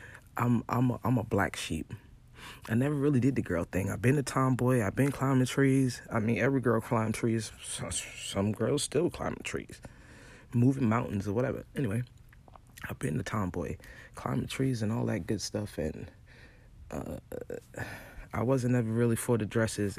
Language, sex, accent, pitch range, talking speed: English, male, American, 105-130 Hz, 175 wpm